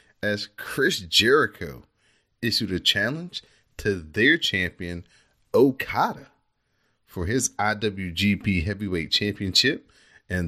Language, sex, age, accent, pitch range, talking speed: English, male, 30-49, American, 90-110 Hz, 90 wpm